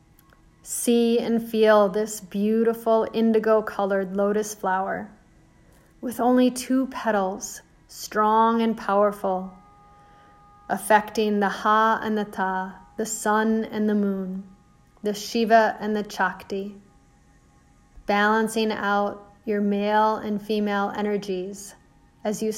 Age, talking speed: 30-49, 105 wpm